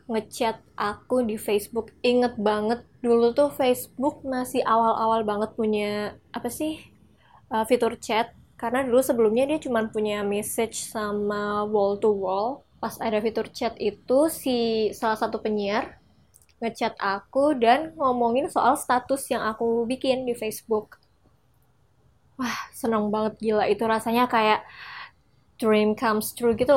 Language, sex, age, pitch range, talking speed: Indonesian, female, 20-39, 215-270 Hz, 135 wpm